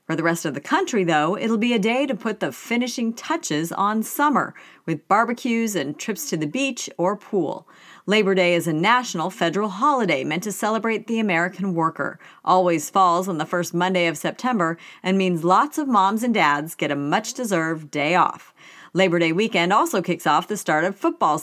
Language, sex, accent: English, female, American